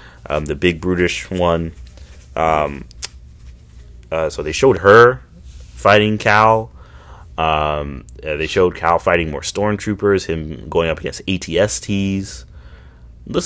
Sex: male